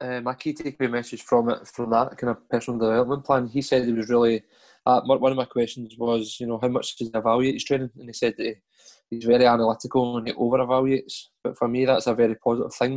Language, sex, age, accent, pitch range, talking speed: English, male, 20-39, British, 115-130 Hz, 240 wpm